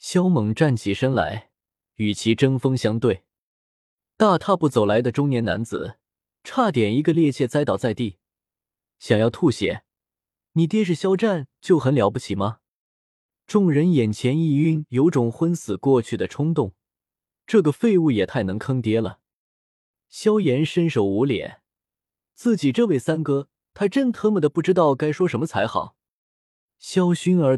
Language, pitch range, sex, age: Chinese, 110-170 Hz, male, 20-39